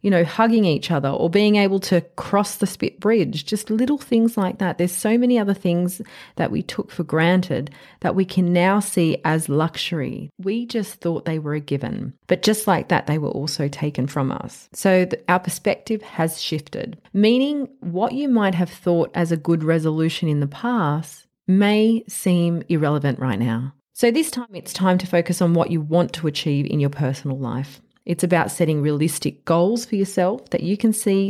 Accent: Australian